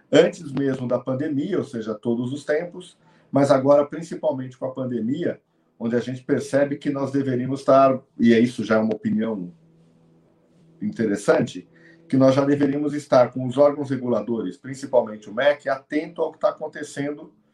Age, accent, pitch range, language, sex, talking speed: 50-69, Brazilian, 115-150 Hz, Portuguese, male, 165 wpm